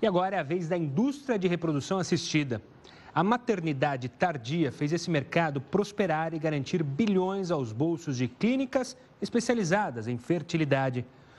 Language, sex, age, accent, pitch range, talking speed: Portuguese, male, 30-49, Brazilian, 140-190 Hz, 140 wpm